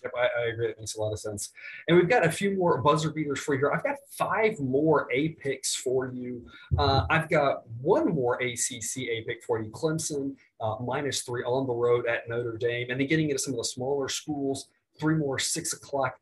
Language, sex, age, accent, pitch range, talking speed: English, male, 30-49, American, 115-145 Hz, 220 wpm